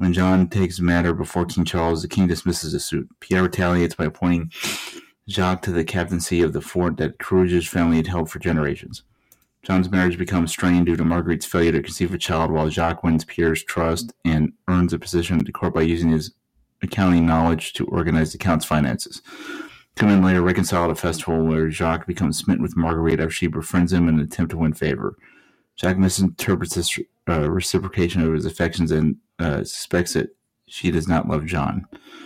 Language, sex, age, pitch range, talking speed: English, male, 30-49, 80-90 Hz, 195 wpm